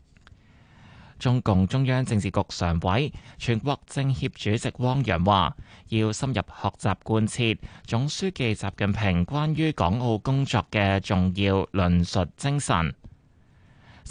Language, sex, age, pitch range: Chinese, male, 20-39, 95-125 Hz